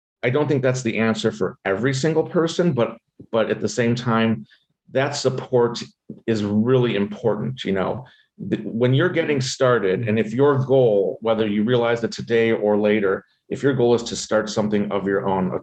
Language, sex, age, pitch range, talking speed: English, male, 40-59, 105-130 Hz, 190 wpm